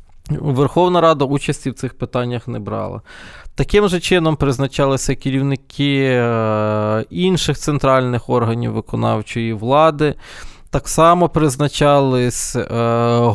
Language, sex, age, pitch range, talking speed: Ukrainian, male, 20-39, 120-145 Hz, 95 wpm